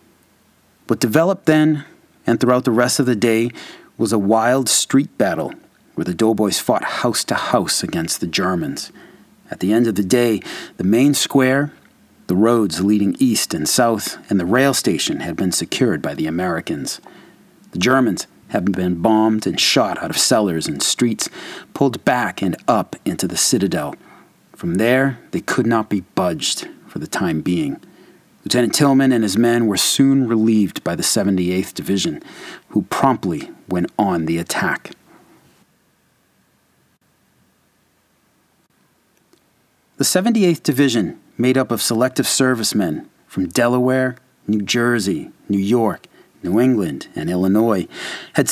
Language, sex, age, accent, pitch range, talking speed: English, male, 40-59, American, 105-135 Hz, 145 wpm